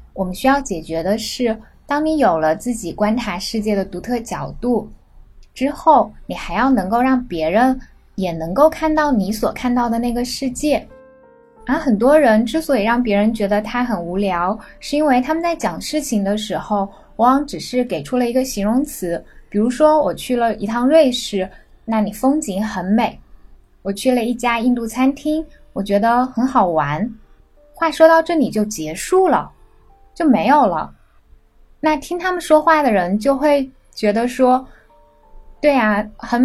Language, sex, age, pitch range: Chinese, female, 10-29, 200-275 Hz